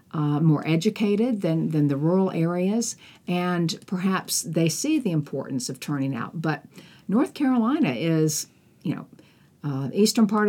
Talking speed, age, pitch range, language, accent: 155 wpm, 50-69, 155-195 Hz, English, American